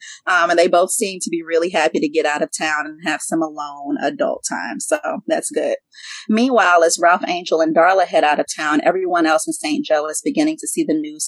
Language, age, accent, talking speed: English, 30-49, American, 235 wpm